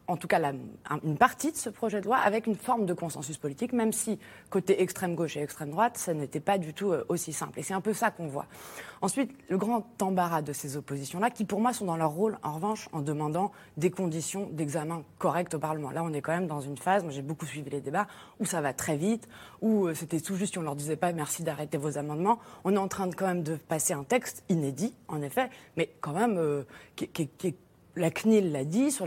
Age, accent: 20-39, French